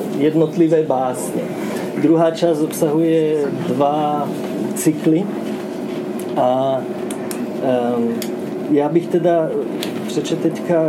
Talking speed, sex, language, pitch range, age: 70 wpm, male, Czech, 145-165 Hz, 40-59